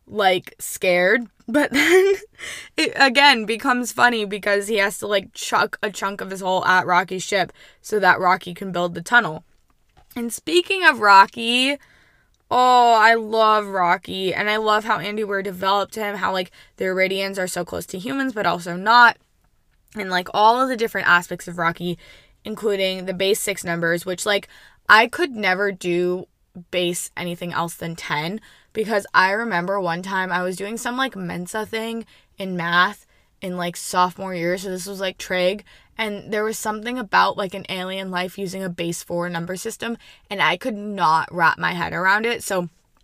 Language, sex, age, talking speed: English, female, 20-39, 180 wpm